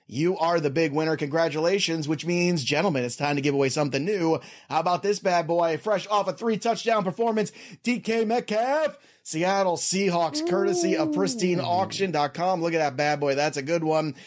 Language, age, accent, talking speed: English, 30-49, American, 180 wpm